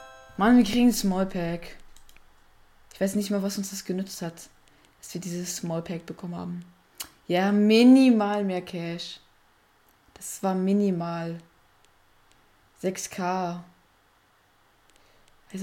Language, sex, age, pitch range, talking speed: German, female, 20-39, 130-200 Hz, 110 wpm